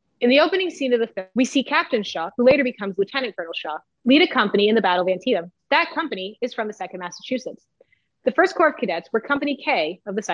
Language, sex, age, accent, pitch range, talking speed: English, female, 30-49, American, 185-265 Hz, 245 wpm